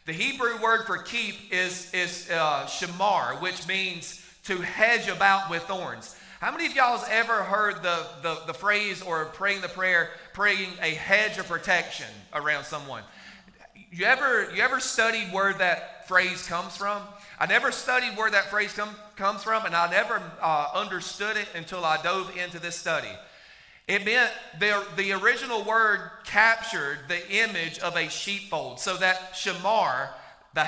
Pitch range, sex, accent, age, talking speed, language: 175-215 Hz, male, American, 40-59, 165 wpm, English